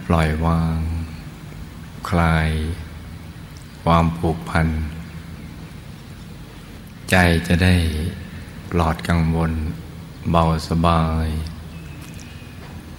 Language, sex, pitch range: Thai, male, 80-90 Hz